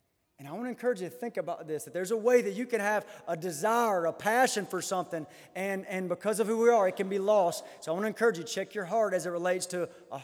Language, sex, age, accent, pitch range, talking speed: English, male, 30-49, American, 195-275 Hz, 285 wpm